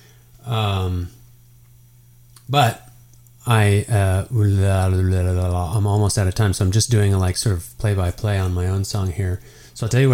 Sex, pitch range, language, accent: male, 100-120 Hz, English, American